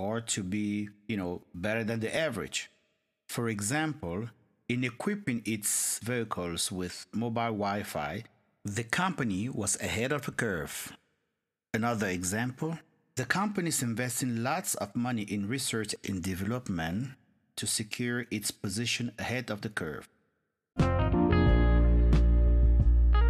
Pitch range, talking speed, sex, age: 95-125 Hz, 120 wpm, male, 50-69